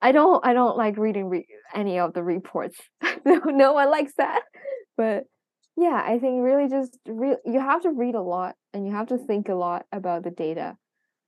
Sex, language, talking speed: female, English, 195 wpm